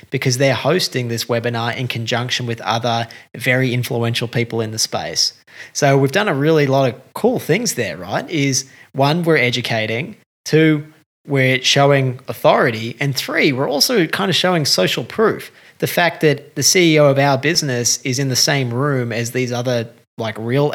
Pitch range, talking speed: 120-145 Hz, 175 wpm